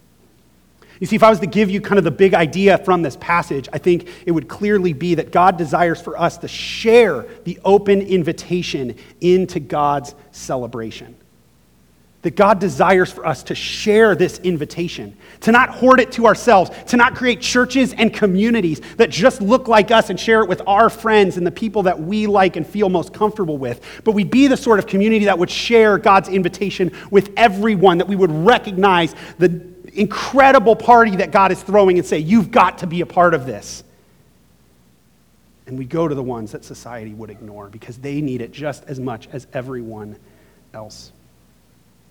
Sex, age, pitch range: male, 30-49, 125-200 Hz